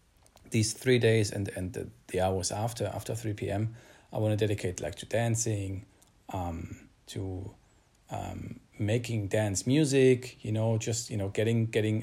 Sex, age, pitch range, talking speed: male, 40-59, 100-120 Hz, 155 wpm